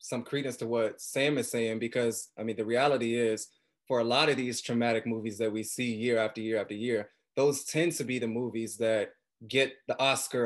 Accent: American